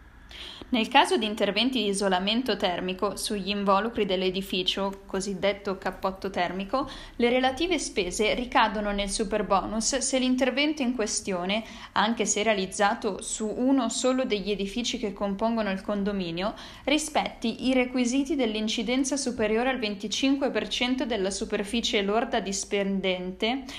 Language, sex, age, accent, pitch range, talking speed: Italian, female, 10-29, native, 195-245 Hz, 115 wpm